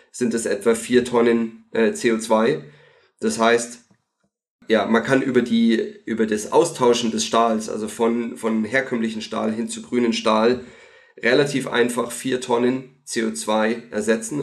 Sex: male